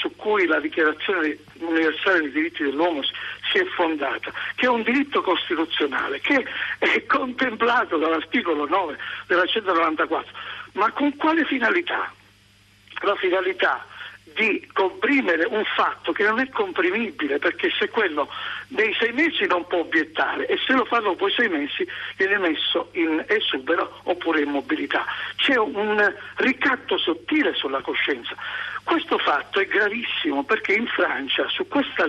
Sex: male